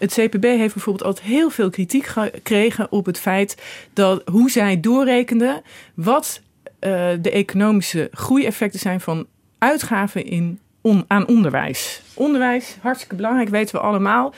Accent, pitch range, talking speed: Dutch, 185-245 Hz, 140 wpm